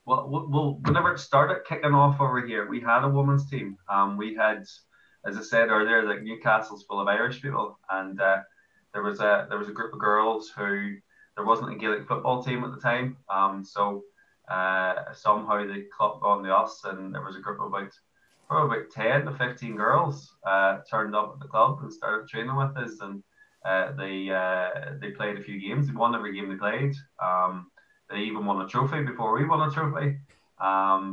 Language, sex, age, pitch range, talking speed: English, male, 20-39, 95-125 Hz, 210 wpm